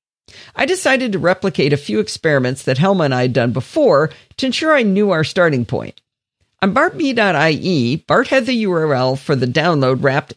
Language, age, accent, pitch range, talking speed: English, 50-69, American, 145-235 Hz, 180 wpm